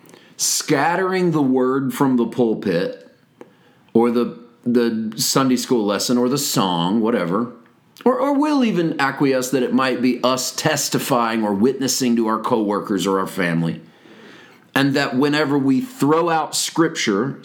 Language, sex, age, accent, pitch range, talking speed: English, male, 40-59, American, 120-165 Hz, 145 wpm